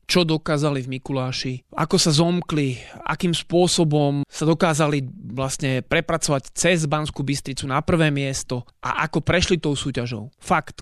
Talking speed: 140 wpm